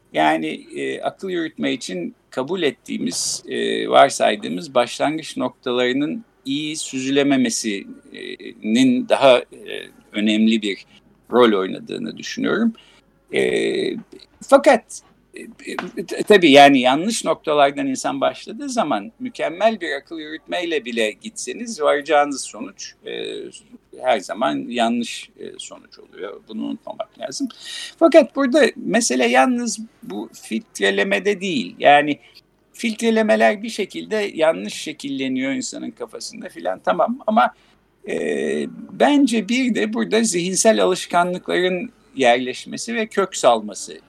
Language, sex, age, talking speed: Turkish, male, 50-69, 105 wpm